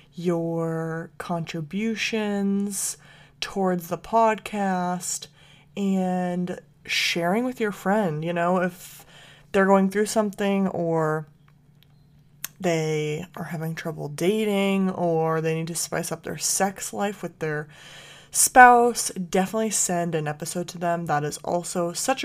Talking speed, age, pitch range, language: 120 wpm, 20-39, 160-195 Hz, English